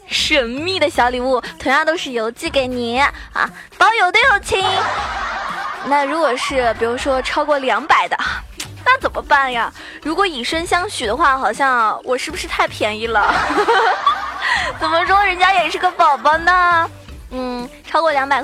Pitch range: 260-360 Hz